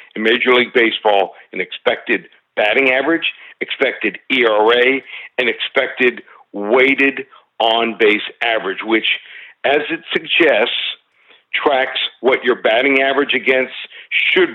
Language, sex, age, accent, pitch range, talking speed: English, male, 50-69, American, 120-145 Hz, 105 wpm